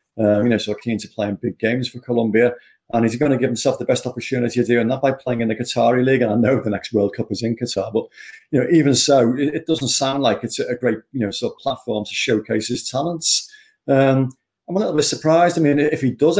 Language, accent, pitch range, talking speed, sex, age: English, British, 110-135 Hz, 270 wpm, male, 40-59